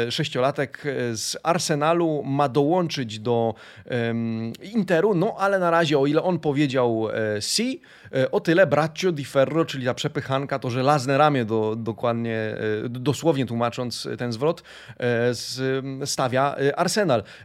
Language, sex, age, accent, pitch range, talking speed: Polish, male, 30-49, native, 120-160 Hz, 115 wpm